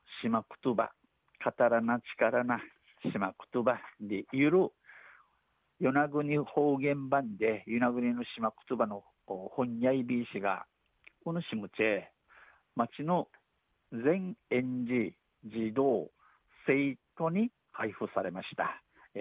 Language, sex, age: Japanese, male, 50-69